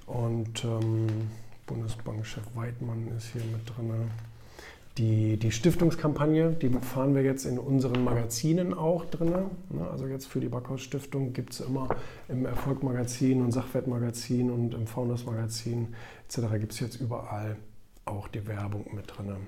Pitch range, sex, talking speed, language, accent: 115-140 Hz, male, 140 wpm, German, German